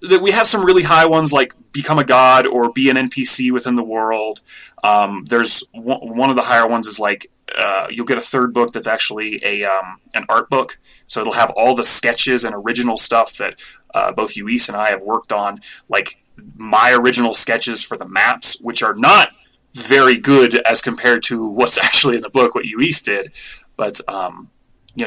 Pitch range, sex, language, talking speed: 110-135 Hz, male, English, 205 wpm